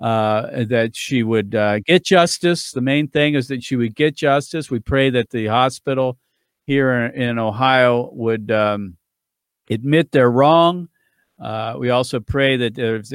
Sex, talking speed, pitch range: male, 160 wpm, 110-130 Hz